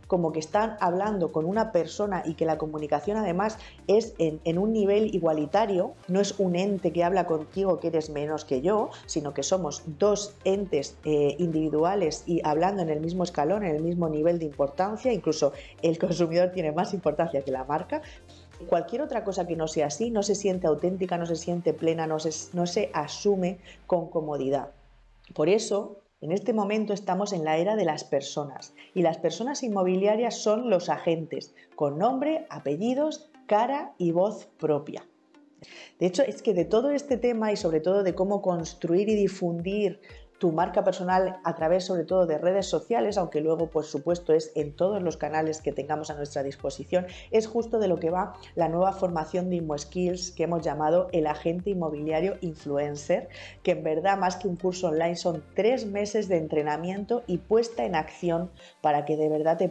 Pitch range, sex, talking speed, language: 155-195 Hz, female, 185 wpm, Spanish